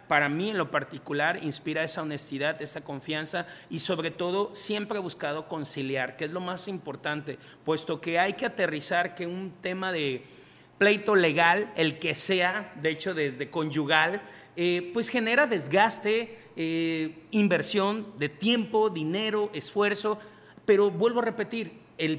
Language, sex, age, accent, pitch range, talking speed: Spanish, male, 40-59, Mexican, 155-200 Hz, 150 wpm